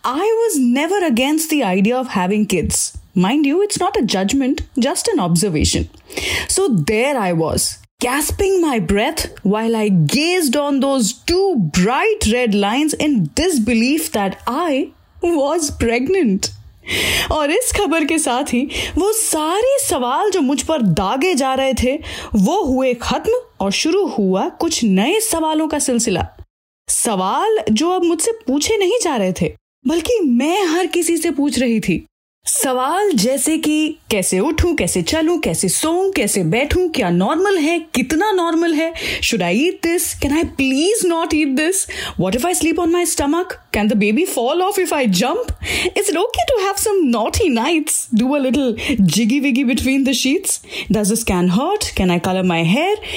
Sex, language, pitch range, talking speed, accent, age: female, Hindi, 225-350 Hz, 160 wpm, native, 20-39